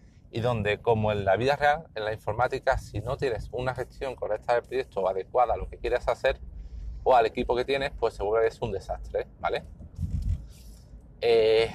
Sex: male